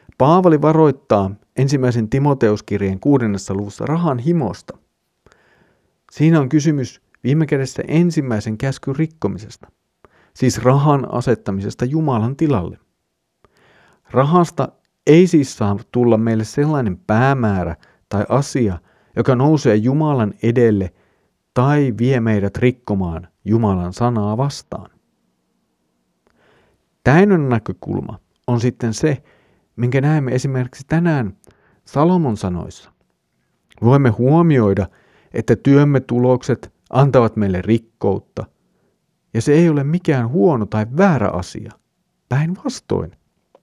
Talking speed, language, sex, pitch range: 100 wpm, Finnish, male, 110-150 Hz